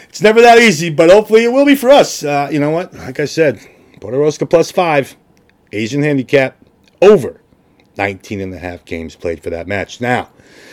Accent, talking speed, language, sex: American, 190 wpm, English, male